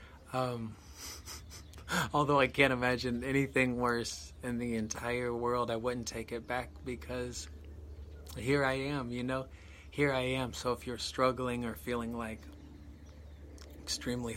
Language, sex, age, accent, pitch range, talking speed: English, male, 20-39, American, 95-120 Hz, 140 wpm